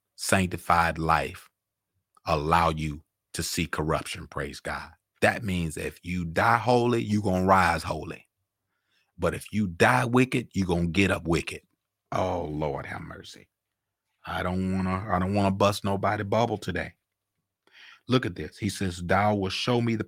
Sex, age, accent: male, 40-59, American